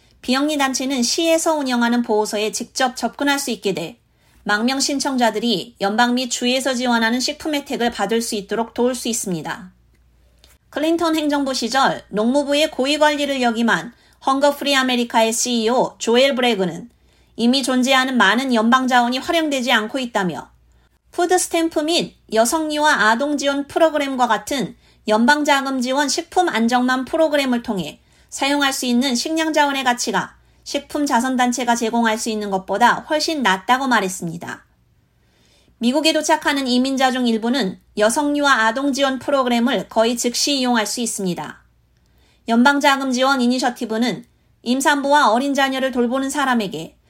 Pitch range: 225-280 Hz